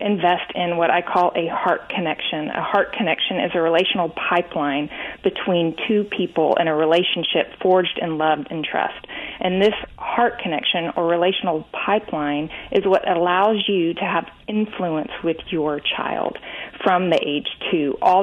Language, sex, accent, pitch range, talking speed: English, female, American, 165-195 Hz, 160 wpm